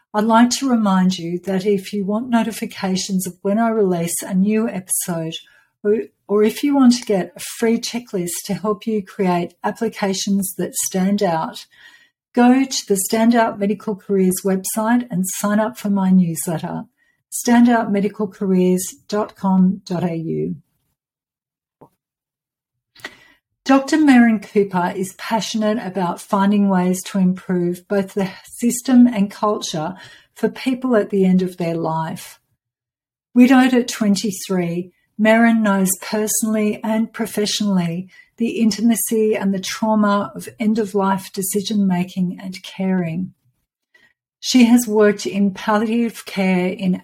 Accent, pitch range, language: Australian, 185-225 Hz, English